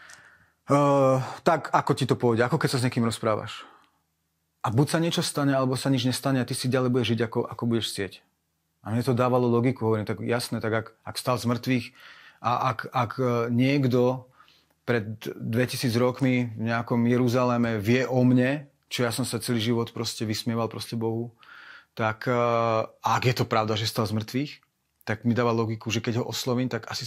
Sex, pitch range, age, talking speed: male, 120-140 Hz, 30-49, 195 wpm